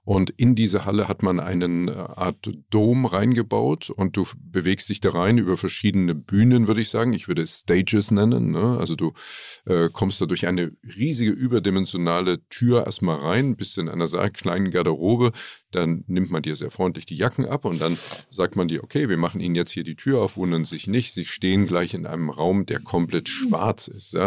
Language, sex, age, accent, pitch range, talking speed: German, male, 50-69, German, 90-115 Hz, 200 wpm